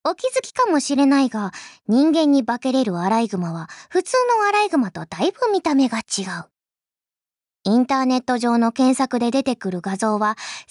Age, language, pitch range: 20-39, Japanese, 230-375 Hz